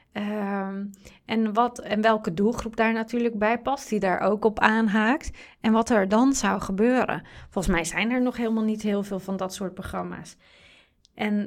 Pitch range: 200-240 Hz